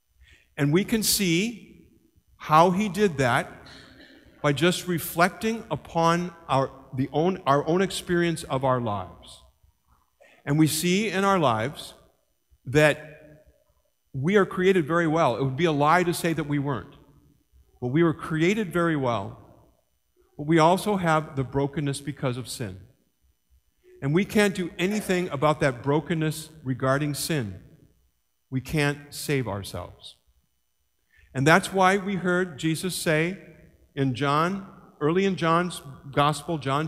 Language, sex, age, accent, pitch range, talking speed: English, male, 50-69, American, 130-175 Hz, 140 wpm